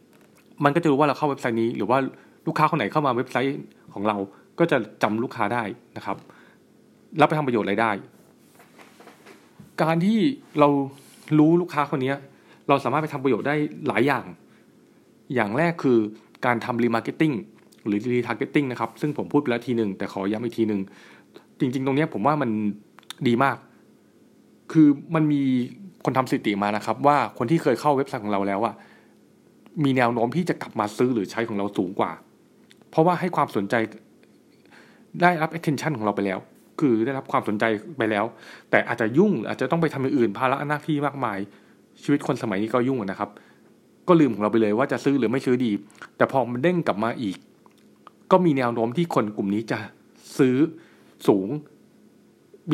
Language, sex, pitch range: Thai, male, 110-150 Hz